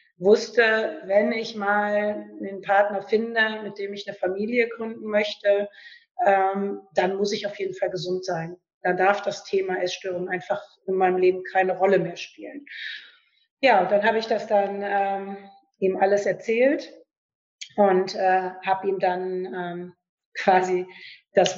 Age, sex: 30-49, female